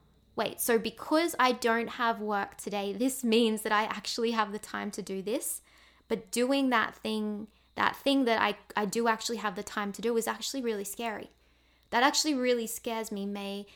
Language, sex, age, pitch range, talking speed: English, female, 20-39, 190-225 Hz, 195 wpm